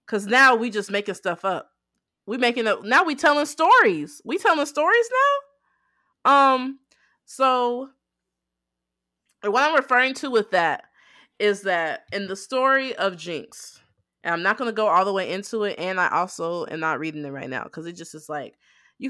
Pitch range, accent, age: 175-245 Hz, American, 20-39